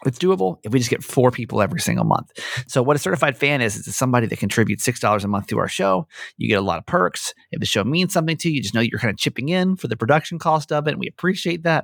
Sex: male